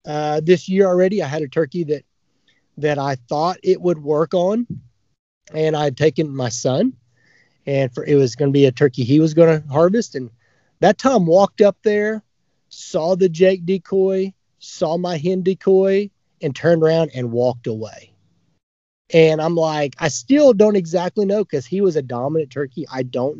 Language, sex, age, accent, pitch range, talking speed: English, male, 30-49, American, 140-175 Hz, 180 wpm